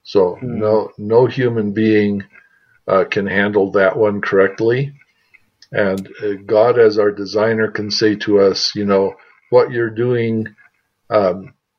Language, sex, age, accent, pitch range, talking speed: English, male, 50-69, American, 95-120 Hz, 130 wpm